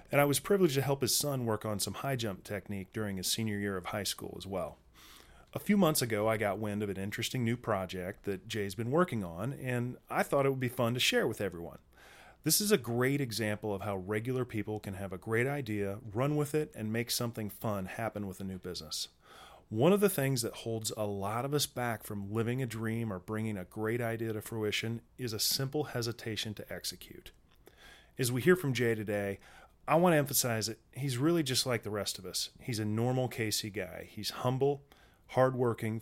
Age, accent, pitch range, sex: 30-49, American, 105-125 Hz, male